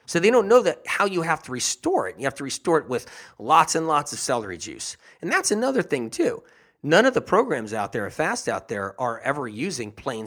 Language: English